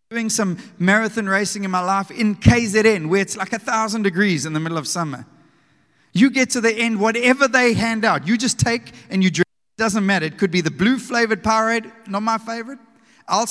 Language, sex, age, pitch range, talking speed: English, male, 30-49, 195-235 Hz, 220 wpm